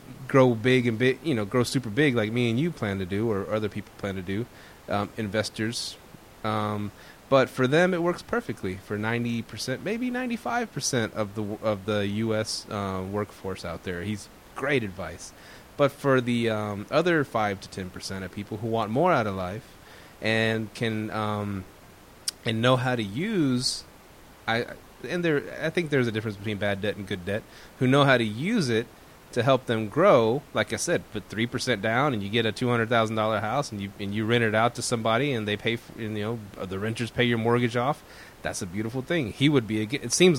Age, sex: 20-39, male